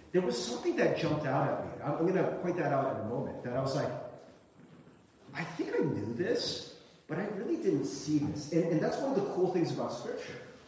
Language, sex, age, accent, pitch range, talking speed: English, male, 40-59, American, 145-205 Hz, 235 wpm